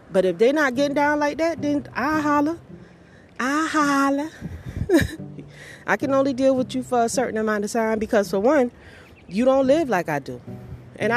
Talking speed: 190 wpm